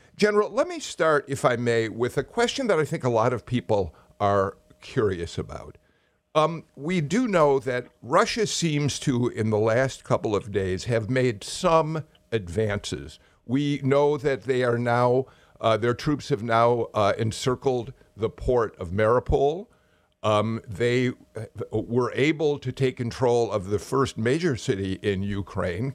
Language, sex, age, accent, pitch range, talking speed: English, male, 50-69, American, 110-155 Hz, 160 wpm